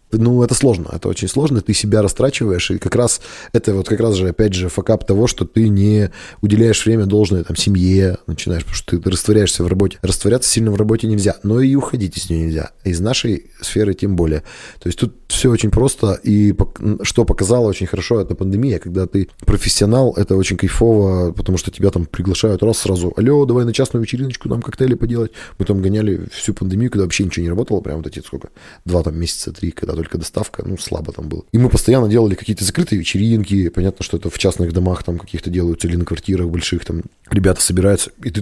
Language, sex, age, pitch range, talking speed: Russian, male, 20-39, 90-115 Hz, 215 wpm